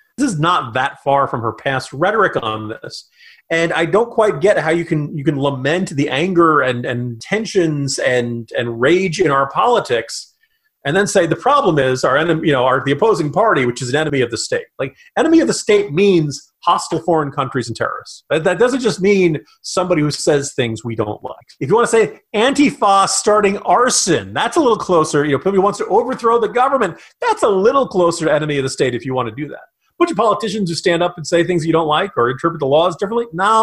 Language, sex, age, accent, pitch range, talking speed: English, male, 40-59, American, 150-220 Hz, 230 wpm